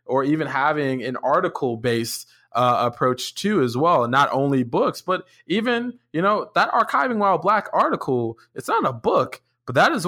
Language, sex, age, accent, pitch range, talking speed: English, male, 20-39, American, 125-155 Hz, 180 wpm